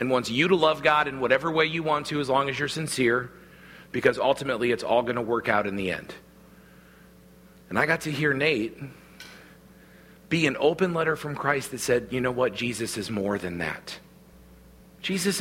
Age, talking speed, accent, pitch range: 40-59, 200 wpm, American, 135-175 Hz